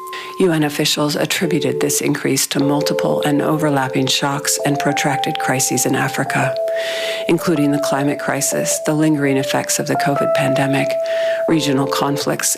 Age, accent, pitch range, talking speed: 50-69, American, 135-165 Hz, 135 wpm